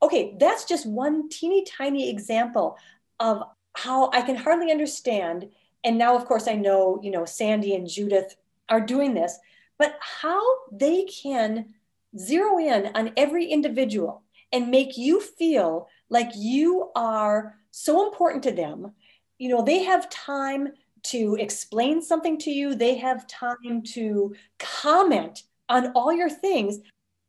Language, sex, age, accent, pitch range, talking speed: English, female, 40-59, American, 215-310 Hz, 145 wpm